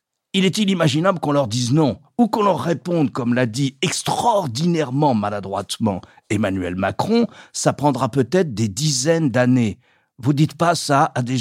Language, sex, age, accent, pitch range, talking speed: French, male, 50-69, French, 120-170 Hz, 165 wpm